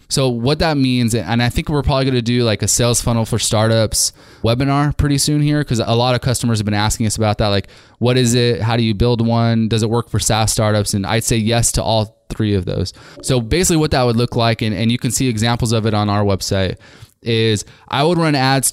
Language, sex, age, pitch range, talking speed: English, male, 20-39, 110-130 Hz, 255 wpm